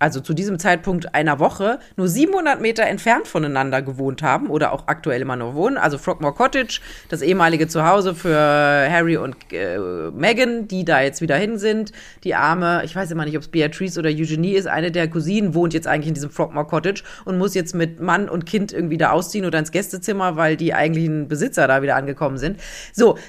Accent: German